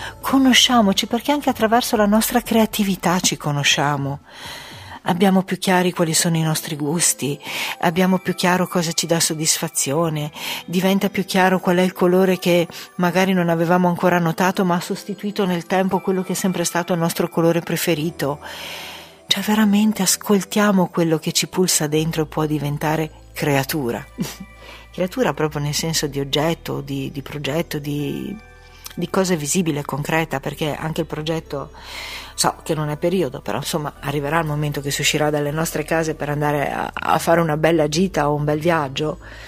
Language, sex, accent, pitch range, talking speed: Italian, female, native, 155-185 Hz, 165 wpm